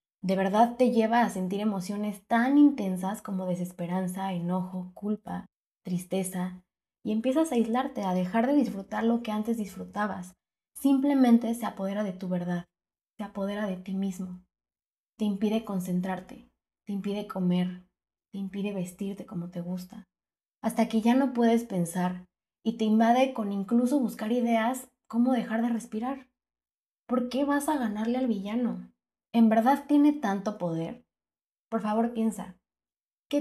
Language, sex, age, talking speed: Spanish, female, 20-39, 145 wpm